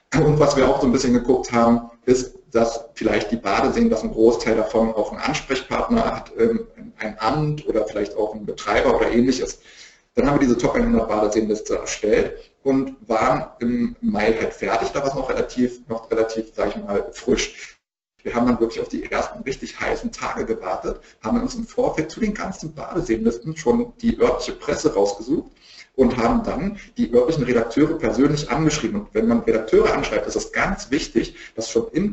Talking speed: 185 wpm